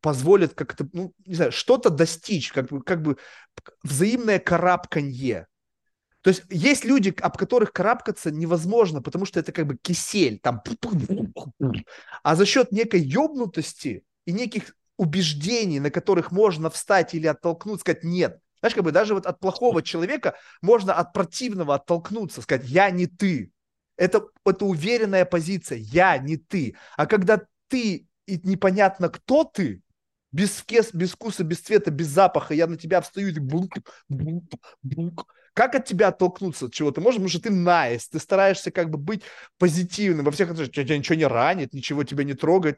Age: 30-49